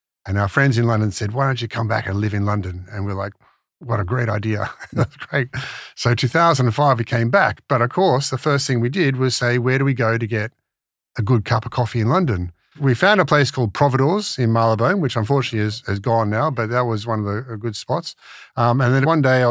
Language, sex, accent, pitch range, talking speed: English, male, Australian, 105-130 Hz, 245 wpm